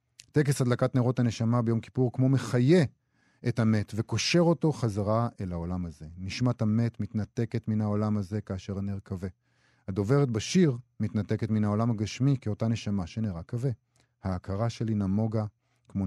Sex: male